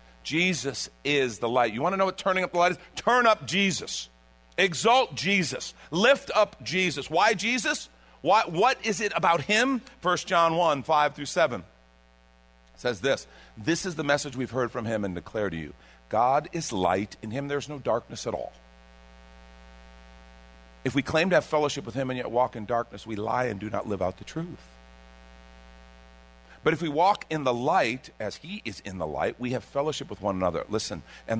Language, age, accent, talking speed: English, 50-69, American, 195 wpm